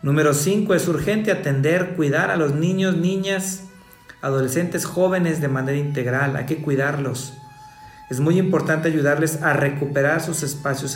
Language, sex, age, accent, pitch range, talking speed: Spanish, male, 50-69, Mexican, 135-165 Hz, 140 wpm